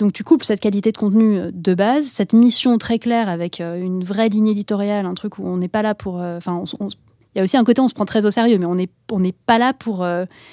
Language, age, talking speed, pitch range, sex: French, 20-39, 280 wpm, 190-230 Hz, female